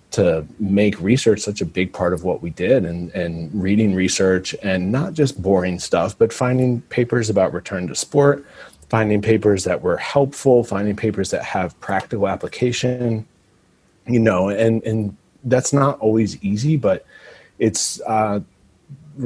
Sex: male